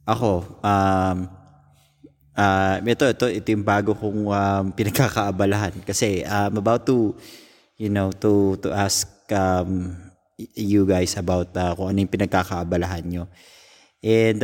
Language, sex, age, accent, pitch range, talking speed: Filipino, male, 20-39, native, 95-115 Hz, 125 wpm